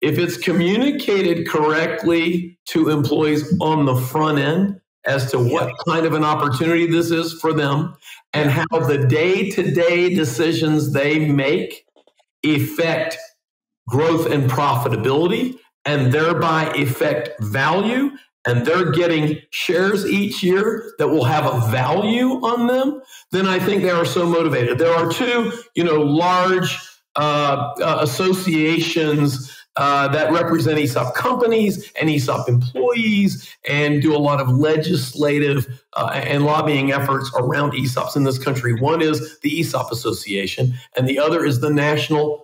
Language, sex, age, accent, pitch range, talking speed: English, male, 50-69, American, 135-170 Hz, 135 wpm